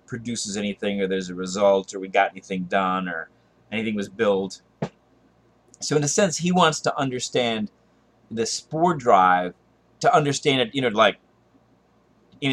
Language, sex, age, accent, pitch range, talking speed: English, male, 30-49, American, 100-145 Hz, 160 wpm